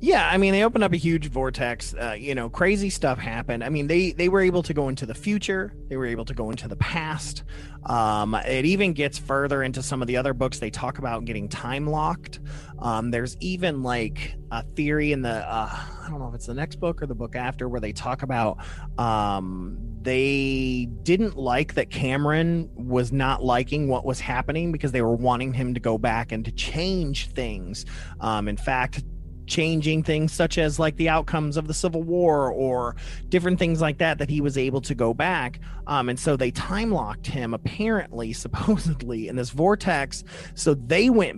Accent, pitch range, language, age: American, 115-155 Hz, English, 30-49